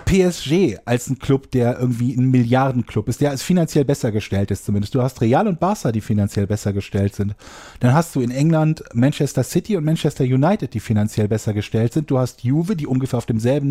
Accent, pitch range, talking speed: German, 115-155 Hz, 210 wpm